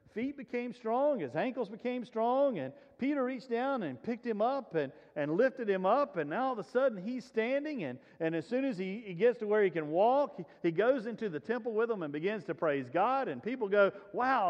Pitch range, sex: 180-265 Hz, male